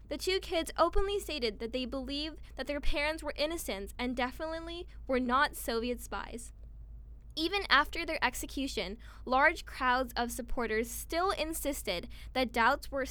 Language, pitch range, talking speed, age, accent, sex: English, 240-310 Hz, 145 wpm, 10-29, American, female